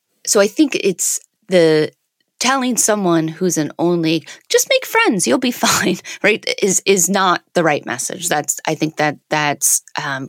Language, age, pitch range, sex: English, 30-49, 155-215 Hz, female